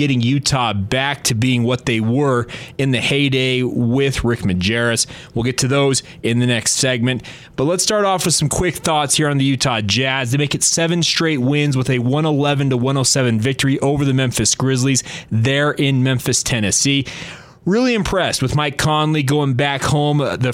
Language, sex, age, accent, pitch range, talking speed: English, male, 30-49, American, 125-150 Hz, 180 wpm